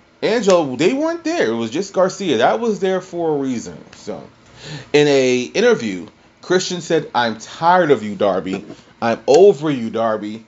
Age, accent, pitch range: 30-49, American, 105-145 Hz